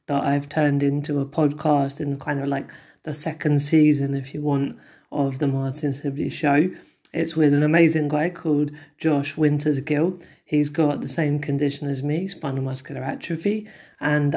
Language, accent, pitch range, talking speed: English, British, 140-150 Hz, 170 wpm